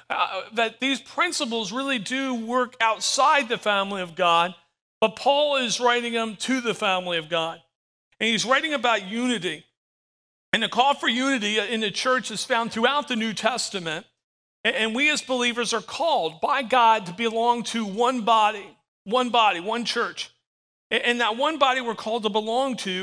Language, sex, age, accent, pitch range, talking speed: English, male, 40-59, American, 210-255 Hz, 175 wpm